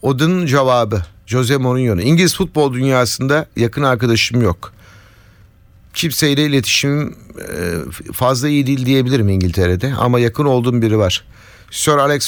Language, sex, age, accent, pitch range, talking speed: Turkish, male, 50-69, native, 105-145 Hz, 120 wpm